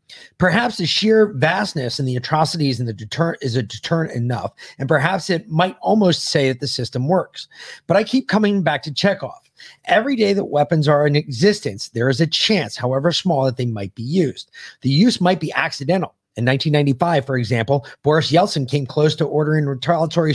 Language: English